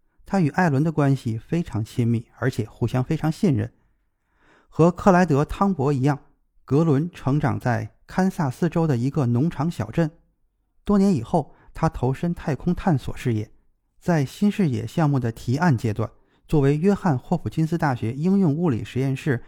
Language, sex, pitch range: Chinese, male, 120-165 Hz